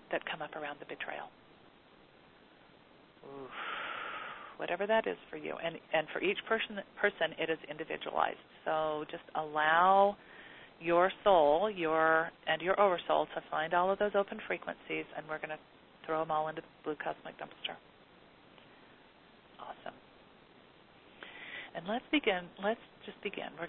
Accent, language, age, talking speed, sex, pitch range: American, English, 40-59, 140 wpm, female, 160-220 Hz